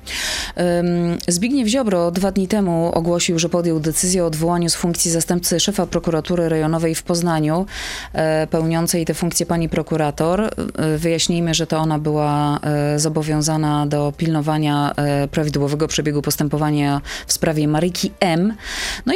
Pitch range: 140-165 Hz